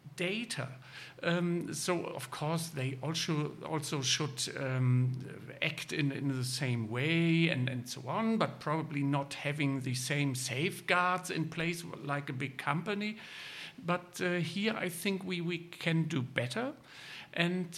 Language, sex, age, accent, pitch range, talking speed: English, male, 60-79, German, 145-180 Hz, 150 wpm